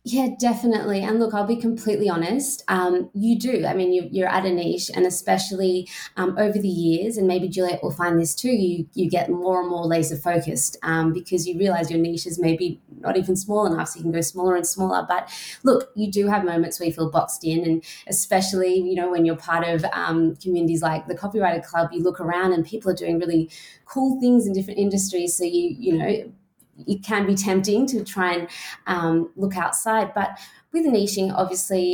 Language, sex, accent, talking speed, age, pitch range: English, female, Australian, 210 wpm, 20-39, 170-210 Hz